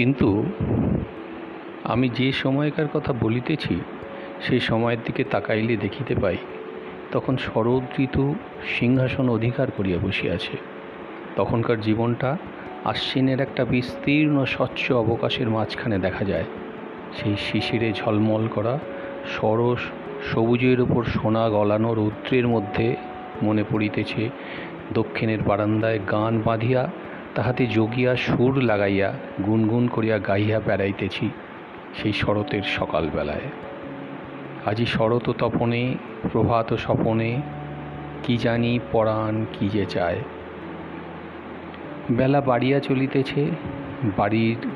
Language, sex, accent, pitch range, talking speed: Bengali, male, native, 105-130 Hz, 90 wpm